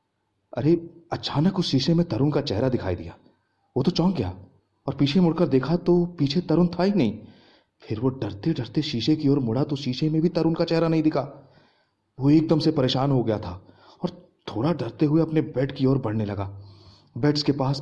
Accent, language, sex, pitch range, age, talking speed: native, Hindi, male, 110-165 Hz, 30-49, 205 wpm